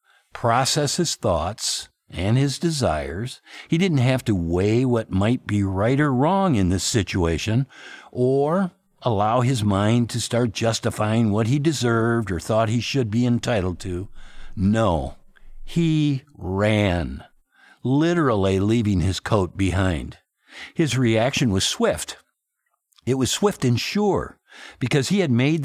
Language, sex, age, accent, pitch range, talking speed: English, male, 60-79, American, 95-135 Hz, 135 wpm